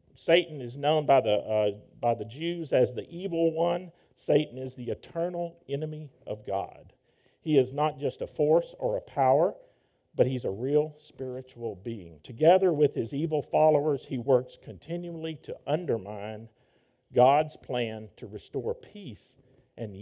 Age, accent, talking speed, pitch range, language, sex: 50-69, American, 155 wpm, 120-155 Hz, English, male